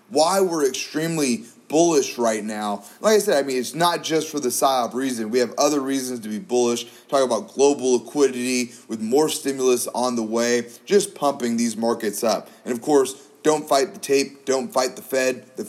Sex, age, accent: male, 30-49, American